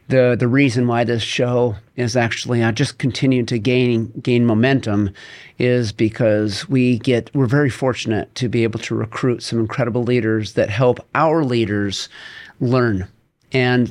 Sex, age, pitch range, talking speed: male, 40-59, 115-135 Hz, 155 wpm